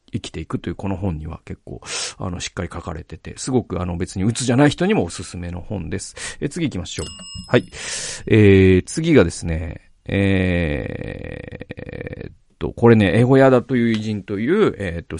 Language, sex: Japanese, male